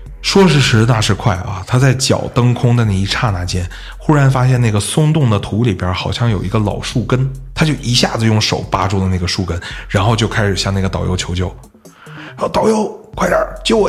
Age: 30-49